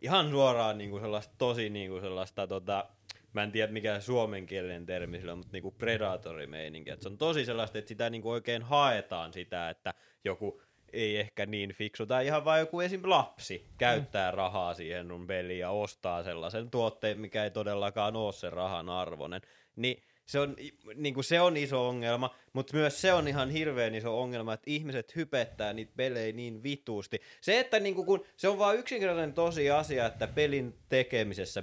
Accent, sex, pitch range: native, male, 100-140 Hz